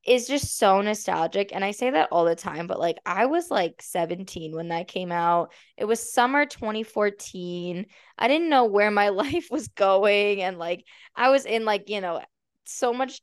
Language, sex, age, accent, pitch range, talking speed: English, female, 10-29, American, 190-260 Hz, 195 wpm